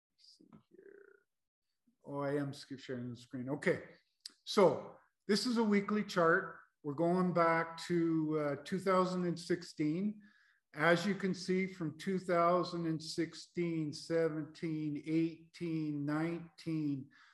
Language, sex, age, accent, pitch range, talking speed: English, male, 50-69, American, 140-165 Hz, 95 wpm